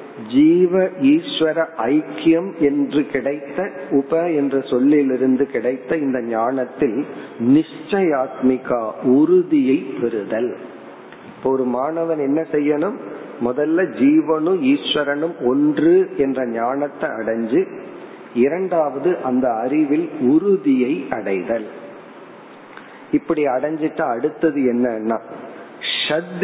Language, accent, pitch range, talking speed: Tamil, native, 135-190 Hz, 75 wpm